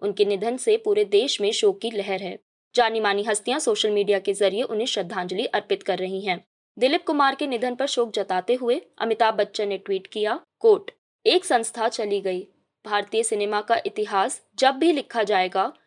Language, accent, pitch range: Hindi, native, 200-245 Hz